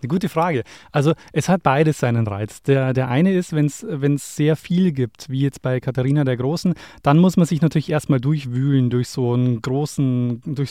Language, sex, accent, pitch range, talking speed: German, male, German, 130-155 Hz, 200 wpm